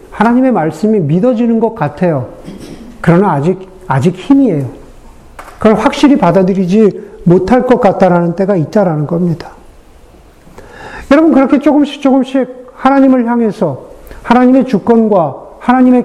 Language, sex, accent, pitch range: Korean, male, native, 190-250 Hz